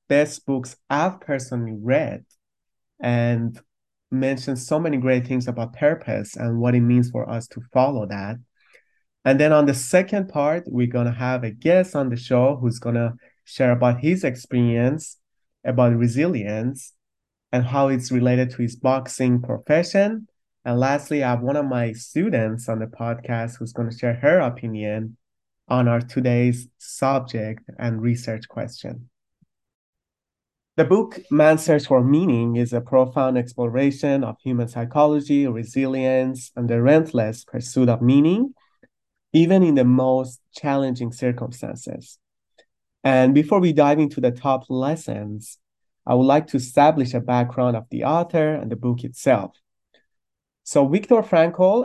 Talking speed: 150 wpm